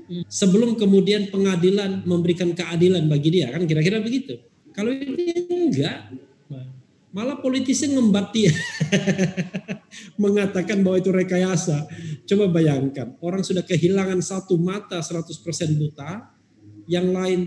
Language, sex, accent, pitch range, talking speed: Indonesian, male, native, 150-190 Hz, 105 wpm